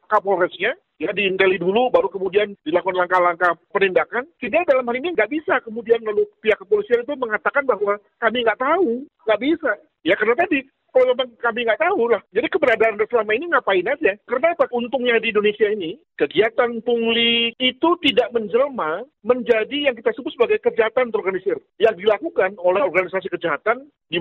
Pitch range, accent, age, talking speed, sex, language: 180-270 Hz, native, 50-69, 160 wpm, male, Indonesian